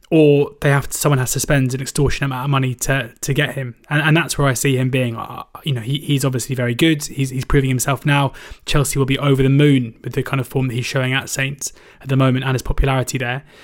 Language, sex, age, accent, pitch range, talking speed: English, male, 20-39, British, 130-140 Hz, 265 wpm